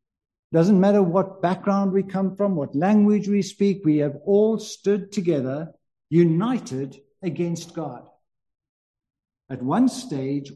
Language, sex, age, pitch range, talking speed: English, male, 60-79, 155-205 Hz, 125 wpm